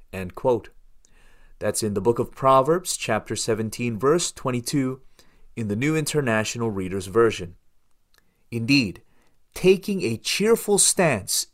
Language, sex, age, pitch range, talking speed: English, male, 30-49, 115-180 Hz, 110 wpm